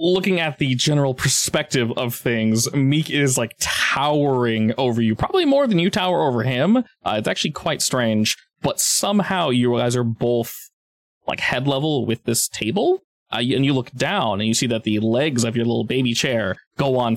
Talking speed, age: 190 wpm, 20-39